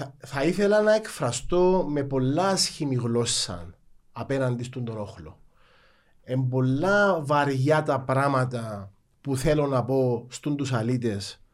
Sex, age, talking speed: male, 30-49, 120 wpm